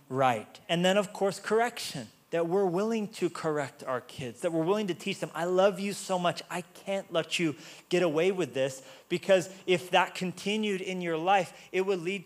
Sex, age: male, 30-49